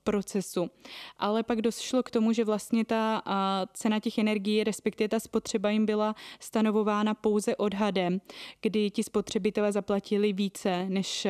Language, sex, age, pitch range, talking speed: Czech, female, 20-39, 195-220 Hz, 135 wpm